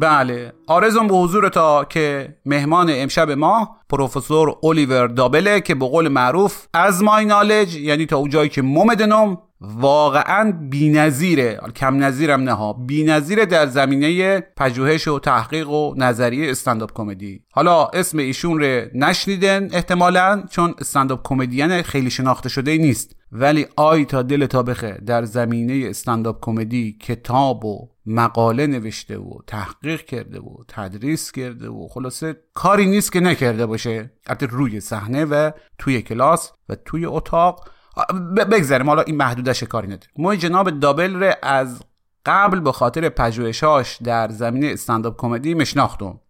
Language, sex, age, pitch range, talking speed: Persian, male, 30-49, 120-160 Hz, 140 wpm